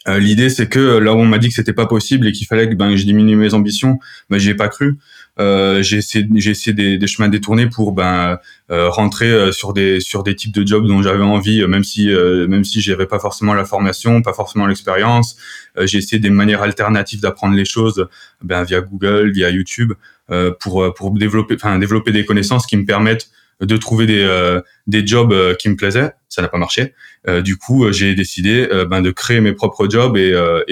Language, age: French, 20-39